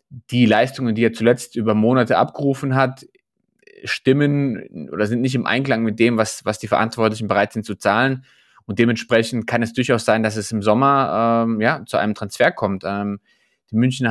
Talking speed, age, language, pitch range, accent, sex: 185 wpm, 20-39, German, 105-125 Hz, German, male